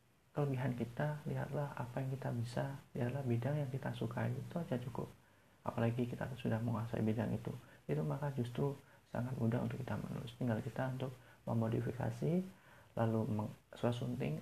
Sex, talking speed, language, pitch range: male, 145 wpm, Indonesian, 115-130 Hz